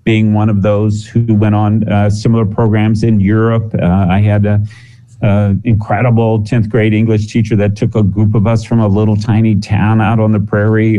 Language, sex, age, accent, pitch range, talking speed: English, male, 50-69, American, 105-125 Hz, 195 wpm